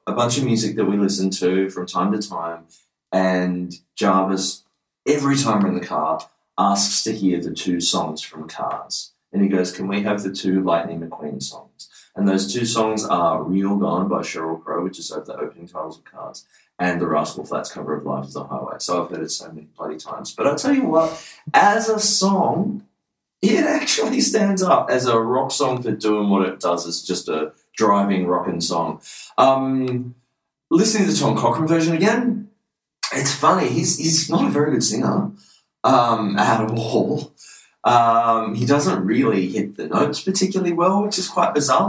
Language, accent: English, Australian